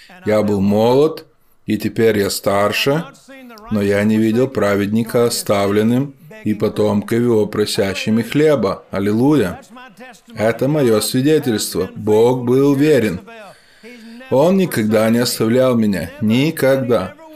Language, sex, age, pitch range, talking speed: Russian, male, 20-39, 105-155 Hz, 105 wpm